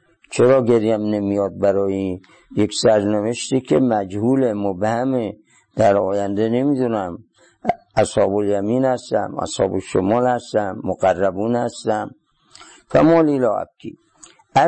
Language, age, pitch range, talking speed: Persian, 50-69, 105-130 Hz, 90 wpm